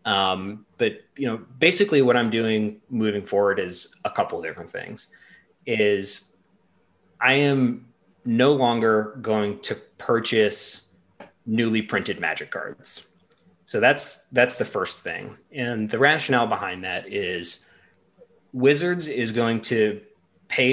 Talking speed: 130 wpm